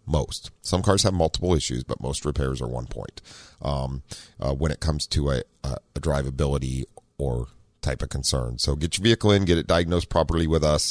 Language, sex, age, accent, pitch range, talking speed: English, male, 40-59, American, 70-105 Hz, 205 wpm